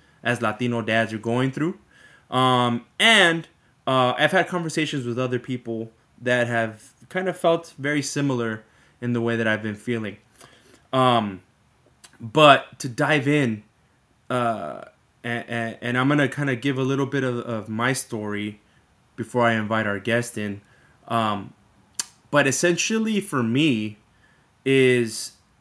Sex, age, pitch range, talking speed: male, 20-39, 115-140 Hz, 145 wpm